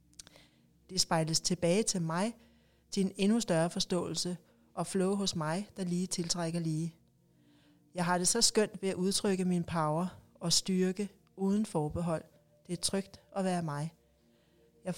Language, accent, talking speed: Danish, native, 155 wpm